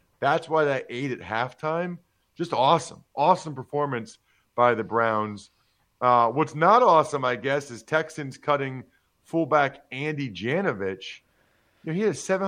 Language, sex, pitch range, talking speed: English, male, 120-160 Hz, 145 wpm